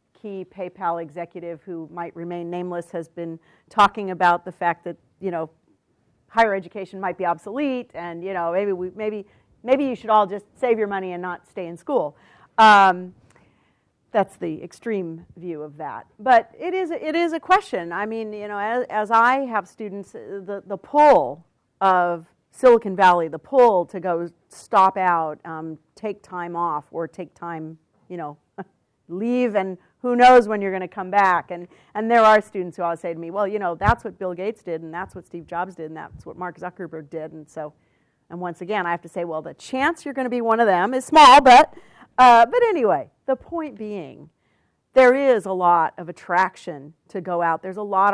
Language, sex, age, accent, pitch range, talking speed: English, female, 40-59, American, 170-215 Hz, 205 wpm